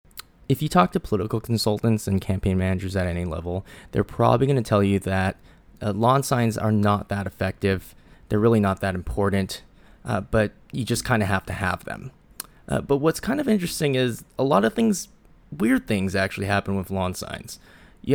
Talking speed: 195 wpm